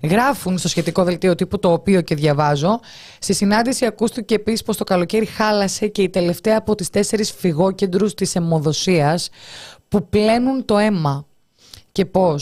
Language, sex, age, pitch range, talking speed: Greek, female, 20-39, 160-210 Hz, 155 wpm